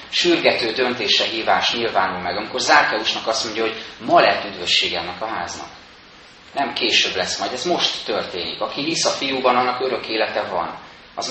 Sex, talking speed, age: male, 165 wpm, 30-49